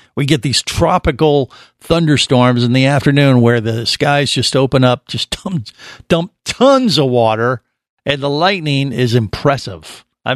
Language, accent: English, American